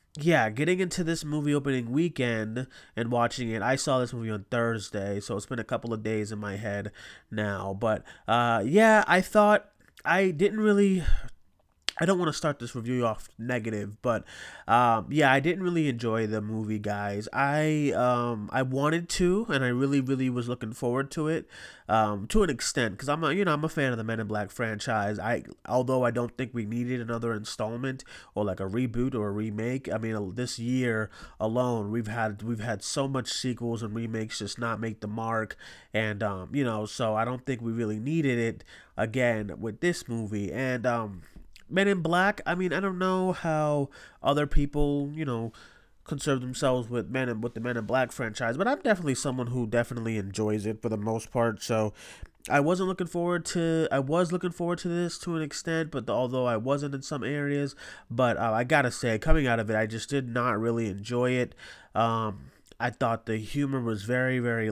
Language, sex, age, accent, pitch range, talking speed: English, male, 30-49, American, 110-145 Hz, 205 wpm